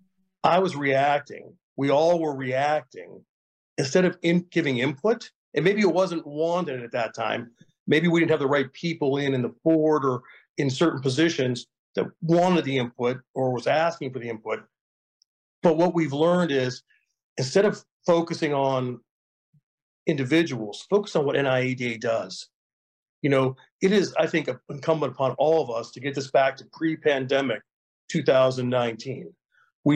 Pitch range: 130-165 Hz